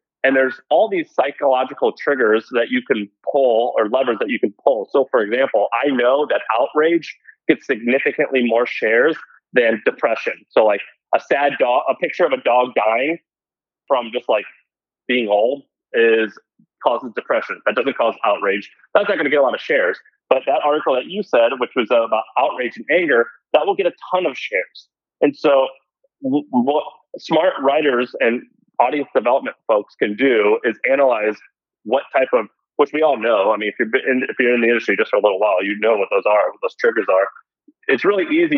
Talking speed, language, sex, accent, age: 195 wpm, English, male, American, 30-49